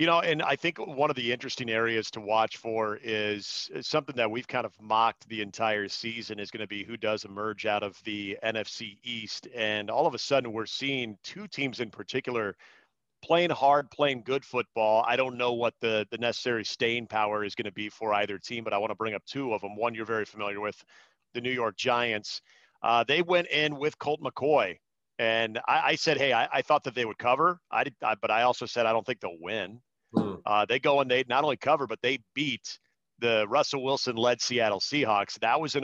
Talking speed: 230 wpm